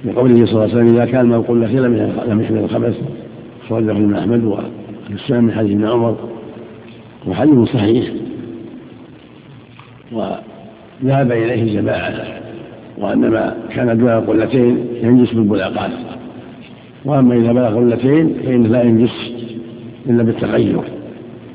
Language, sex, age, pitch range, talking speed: Arabic, male, 60-79, 110-135 Hz, 110 wpm